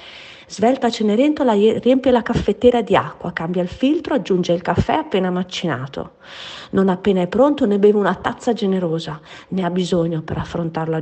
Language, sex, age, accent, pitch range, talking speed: Italian, female, 40-59, native, 175-245 Hz, 165 wpm